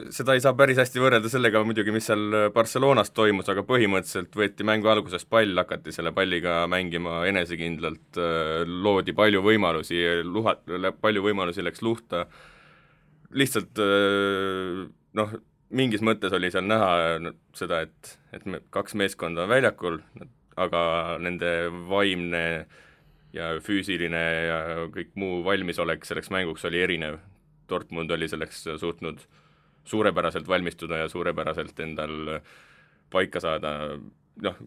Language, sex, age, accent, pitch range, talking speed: English, male, 20-39, Finnish, 85-105 Hz, 120 wpm